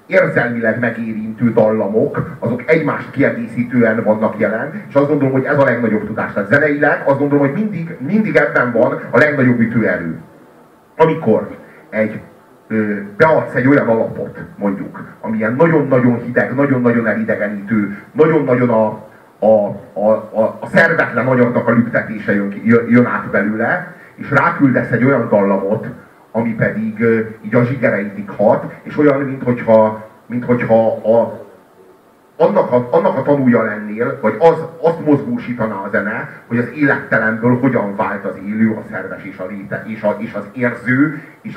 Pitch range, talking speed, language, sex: 110-140 Hz, 135 wpm, Hungarian, male